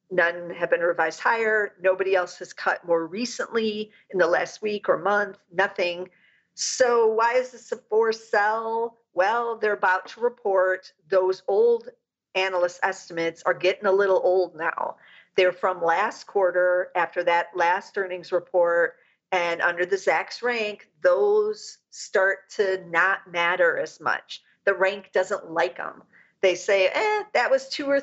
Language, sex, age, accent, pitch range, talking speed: English, female, 50-69, American, 175-220 Hz, 155 wpm